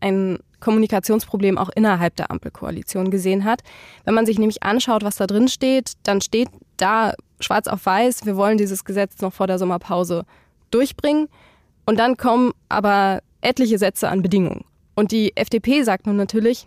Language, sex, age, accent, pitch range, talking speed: German, female, 20-39, German, 195-230 Hz, 165 wpm